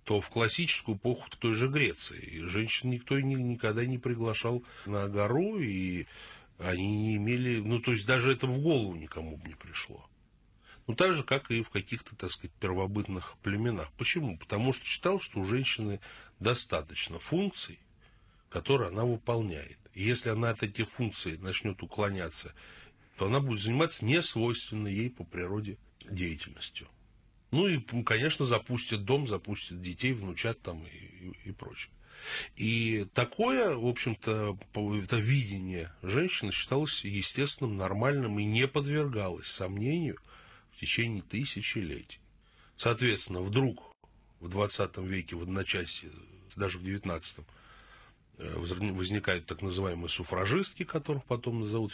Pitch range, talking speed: 95-125 Hz, 135 wpm